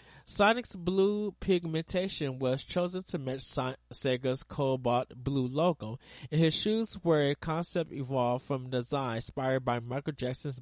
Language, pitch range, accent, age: English, 130-170 Hz, American, 20-39